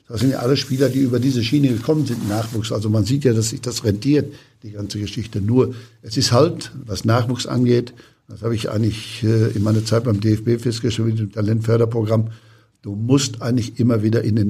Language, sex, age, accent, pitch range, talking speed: German, male, 60-79, German, 110-125 Hz, 205 wpm